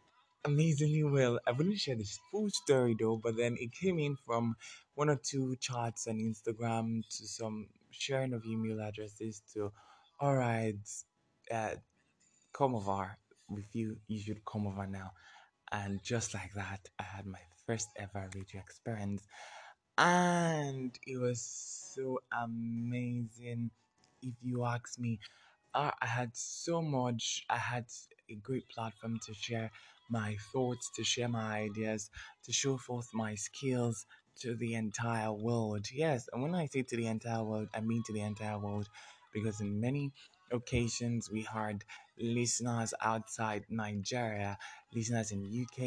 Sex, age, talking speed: male, 20-39, 150 wpm